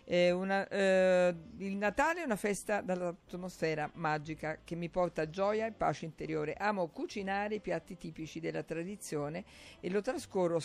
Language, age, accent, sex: Italian, 50-69, native, female